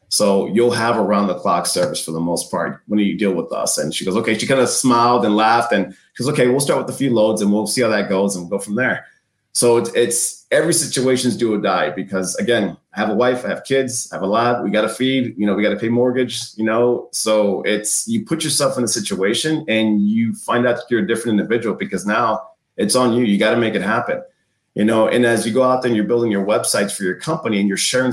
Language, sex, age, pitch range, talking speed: English, male, 30-49, 105-130 Hz, 275 wpm